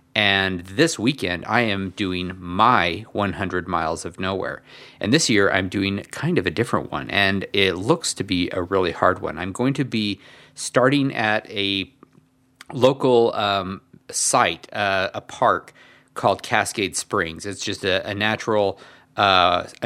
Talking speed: 155 wpm